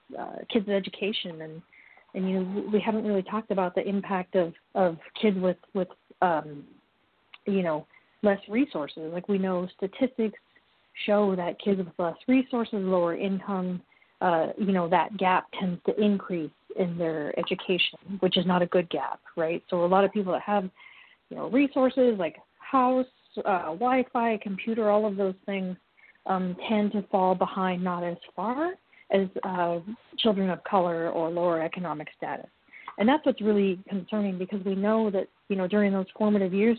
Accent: American